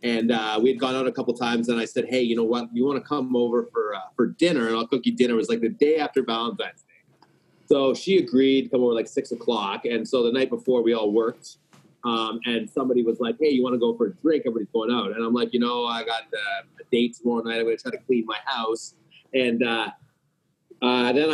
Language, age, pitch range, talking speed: English, 30-49, 120-150 Hz, 265 wpm